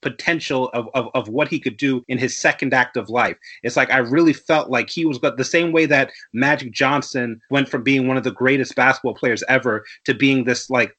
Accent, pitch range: American, 130-160 Hz